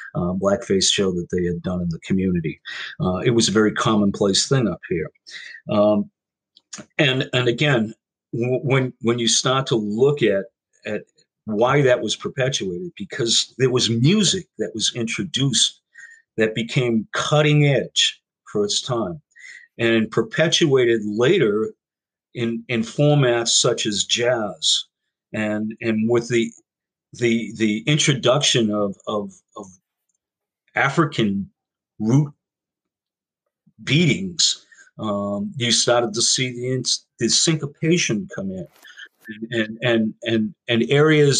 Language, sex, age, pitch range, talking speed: English, male, 50-69, 110-150 Hz, 125 wpm